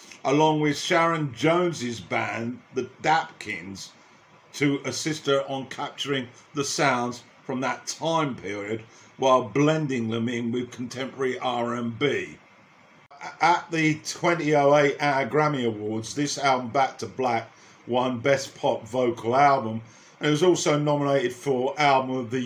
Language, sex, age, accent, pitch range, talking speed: English, male, 50-69, British, 120-150 Hz, 135 wpm